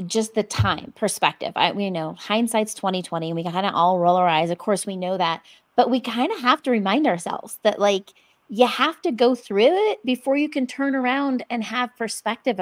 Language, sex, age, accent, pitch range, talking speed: English, female, 30-49, American, 195-250 Hz, 220 wpm